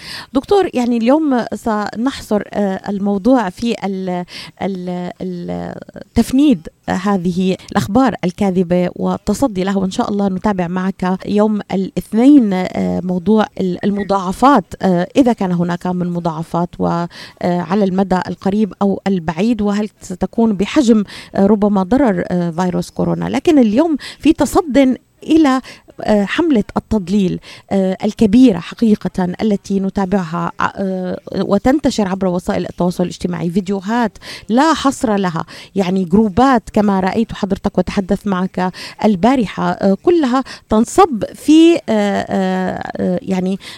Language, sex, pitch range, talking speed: Arabic, female, 185-230 Hz, 95 wpm